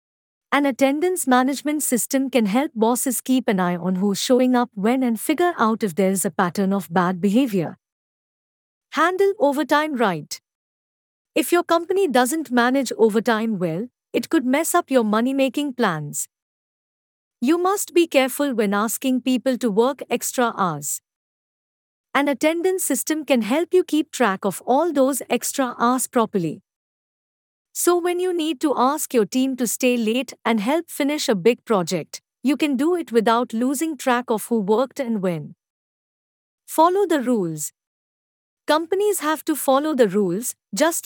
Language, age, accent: English, 50-69, Indian